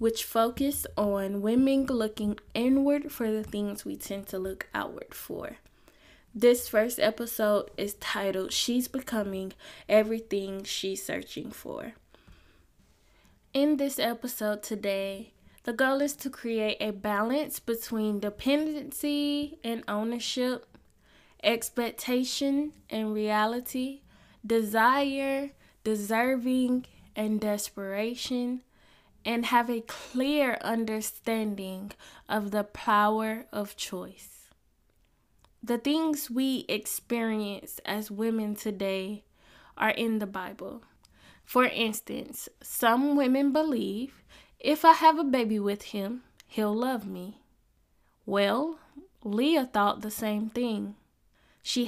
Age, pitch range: 10-29, 210-260 Hz